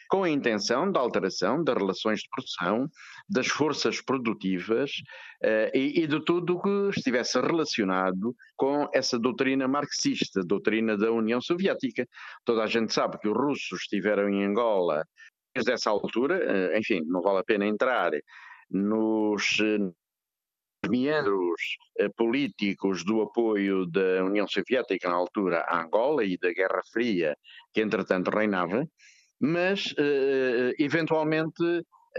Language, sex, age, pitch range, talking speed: Portuguese, male, 50-69, 110-160 Hz, 130 wpm